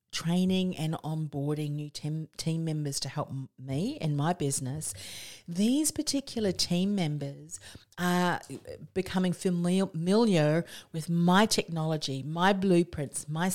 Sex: female